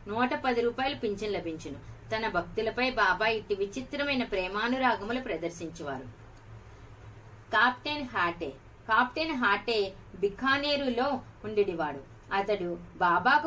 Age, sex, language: 30-49, female, Telugu